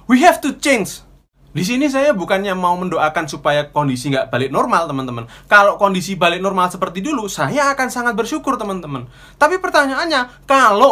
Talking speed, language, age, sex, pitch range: 165 wpm, Indonesian, 20-39, male, 170-235 Hz